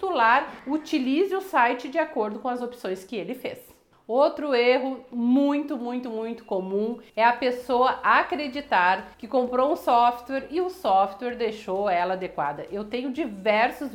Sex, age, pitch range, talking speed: female, 40-59, 220-280 Hz, 145 wpm